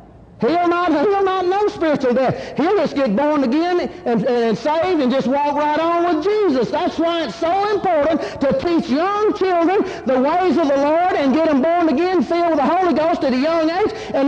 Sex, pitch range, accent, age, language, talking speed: male, 240-330 Hz, American, 40-59, English, 220 wpm